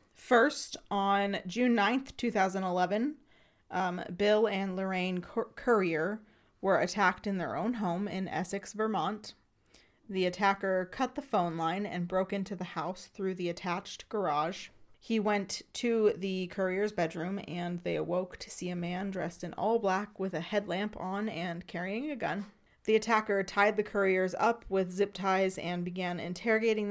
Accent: American